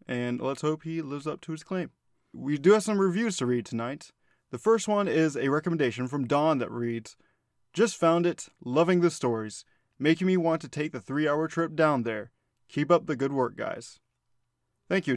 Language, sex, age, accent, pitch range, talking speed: English, male, 20-39, American, 120-165 Hz, 200 wpm